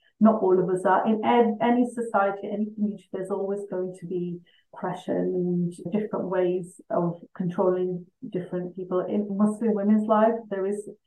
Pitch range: 185-210 Hz